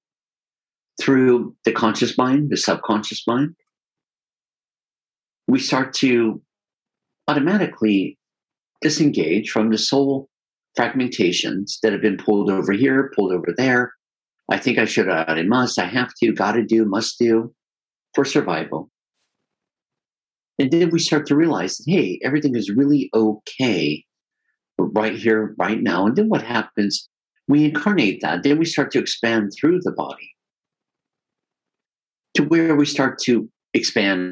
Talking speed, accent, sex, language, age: 135 wpm, American, male, English, 50-69